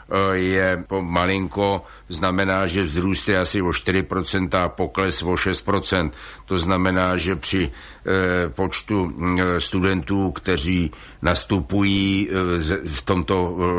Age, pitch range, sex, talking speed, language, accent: 60-79, 90-95 Hz, male, 100 wpm, Czech, native